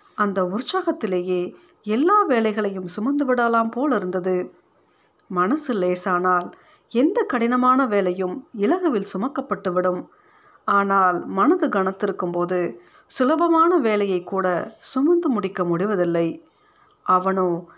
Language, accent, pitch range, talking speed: Tamil, native, 180-265 Hz, 85 wpm